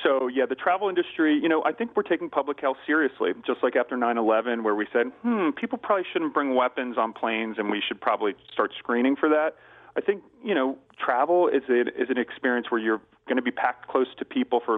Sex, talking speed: male, 225 wpm